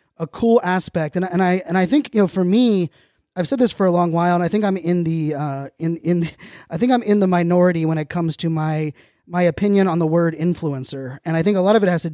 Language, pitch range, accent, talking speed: English, 155-180 Hz, American, 270 wpm